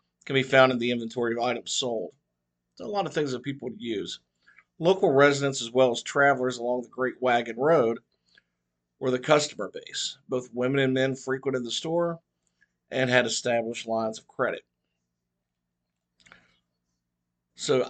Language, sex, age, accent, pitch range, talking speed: English, male, 50-69, American, 110-140 Hz, 160 wpm